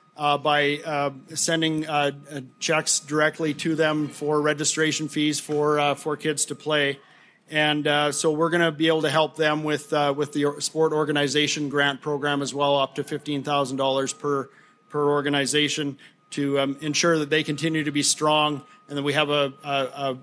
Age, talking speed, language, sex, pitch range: 40-59, 180 wpm, English, male, 145-170 Hz